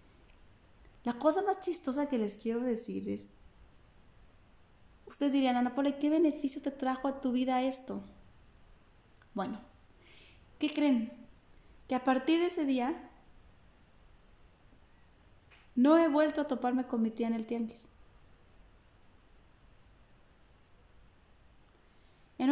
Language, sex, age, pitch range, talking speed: Spanish, female, 30-49, 195-265 Hz, 110 wpm